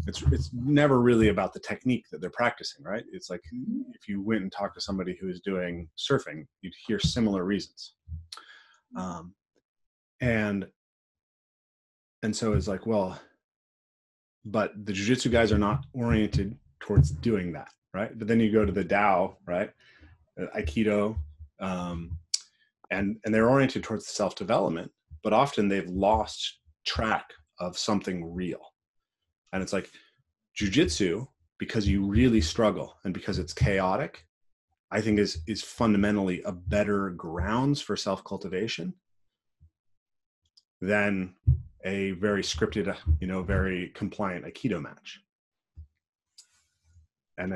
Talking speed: 130 wpm